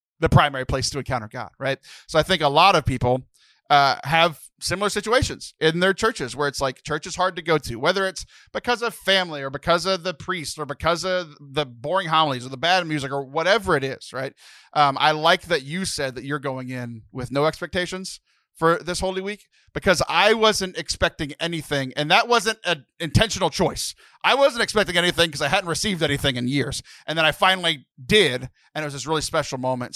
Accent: American